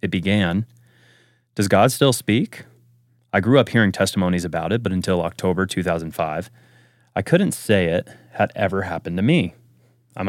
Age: 30-49